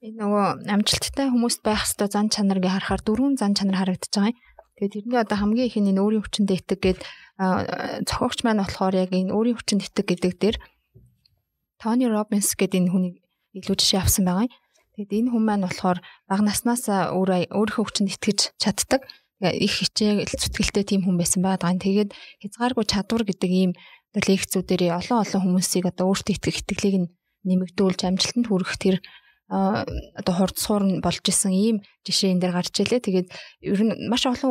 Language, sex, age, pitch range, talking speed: Russian, female, 20-39, 185-215 Hz, 100 wpm